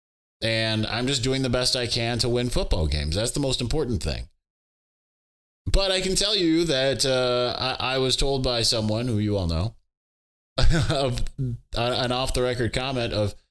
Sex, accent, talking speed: male, American, 180 wpm